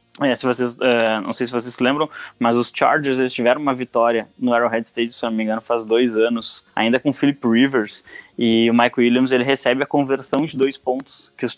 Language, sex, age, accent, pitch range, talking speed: English, male, 10-29, Brazilian, 115-145 Hz, 235 wpm